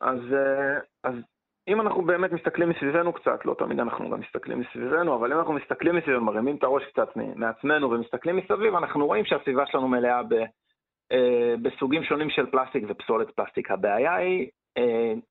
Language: Hebrew